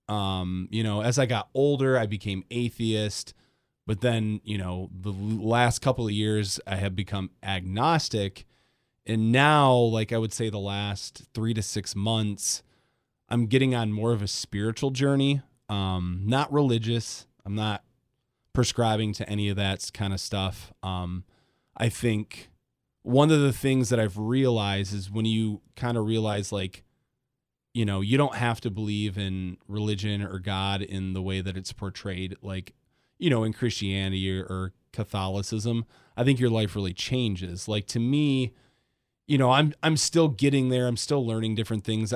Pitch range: 100-120 Hz